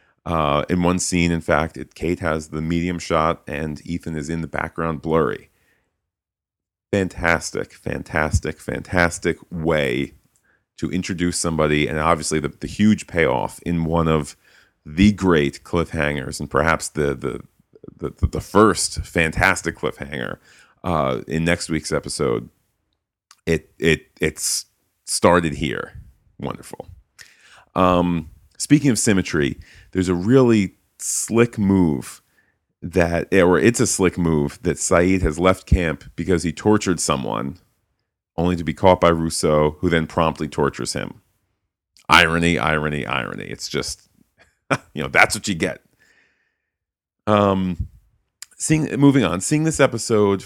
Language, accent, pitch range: English, American, 80-95 Hz